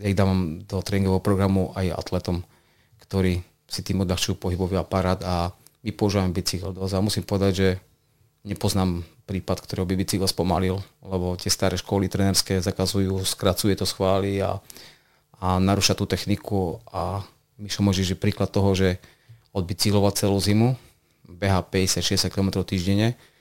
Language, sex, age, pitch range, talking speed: Slovak, male, 30-49, 90-100 Hz, 145 wpm